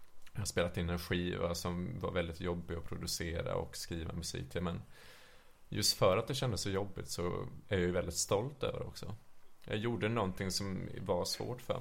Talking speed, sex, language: 205 wpm, male, Swedish